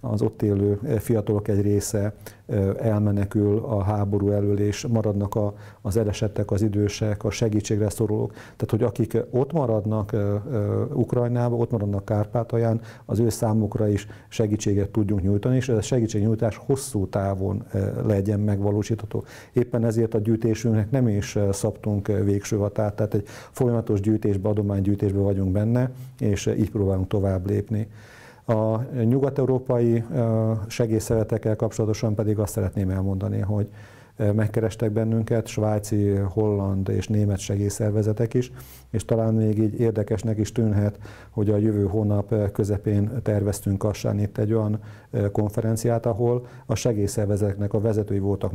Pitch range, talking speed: 105-115 Hz, 130 wpm